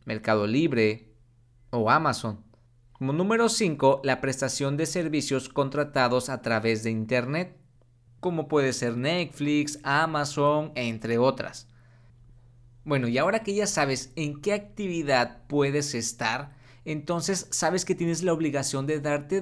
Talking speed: 130 wpm